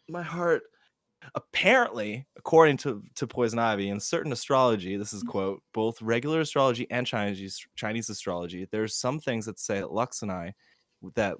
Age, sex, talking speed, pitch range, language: 20-39, male, 160 wpm, 95-110 Hz, English